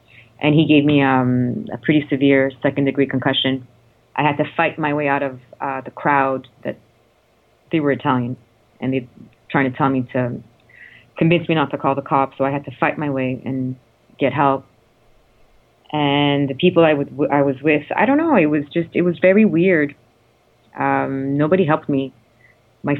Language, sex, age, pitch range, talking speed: English, female, 30-49, 130-150 Hz, 190 wpm